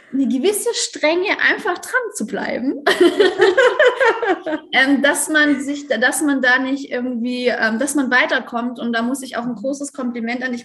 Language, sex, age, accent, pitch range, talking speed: German, female, 20-39, German, 230-280 Hz, 160 wpm